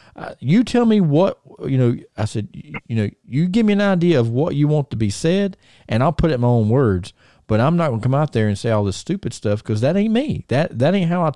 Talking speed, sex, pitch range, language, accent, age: 290 wpm, male, 110-145 Hz, English, American, 40-59